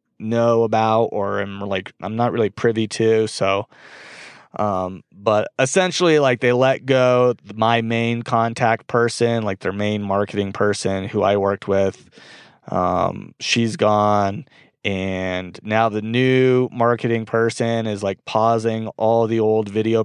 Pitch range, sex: 100-120 Hz, male